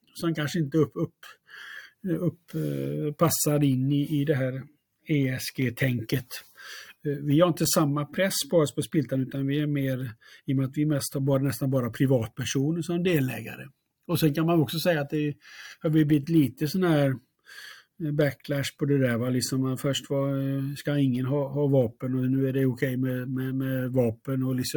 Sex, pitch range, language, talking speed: male, 130-150 Hz, Swedish, 195 wpm